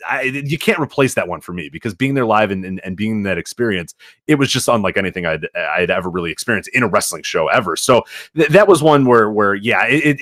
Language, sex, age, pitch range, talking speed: English, male, 30-49, 105-140 Hz, 255 wpm